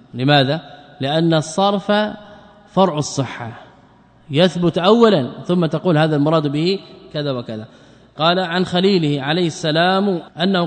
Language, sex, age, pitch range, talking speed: Arabic, male, 20-39, 140-180 Hz, 110 wpm